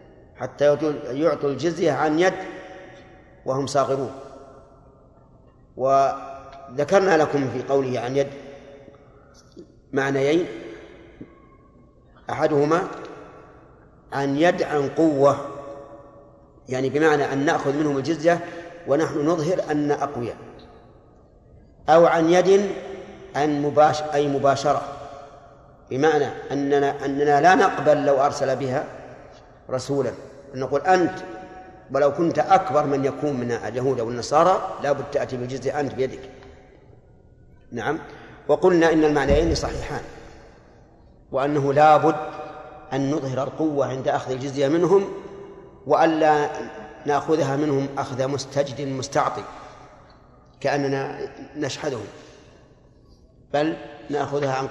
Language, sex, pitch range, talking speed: Arabic, male, 135-155 Hz, 95 wpm